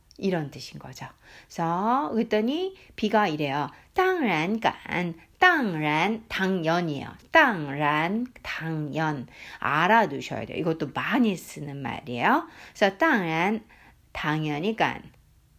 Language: Korean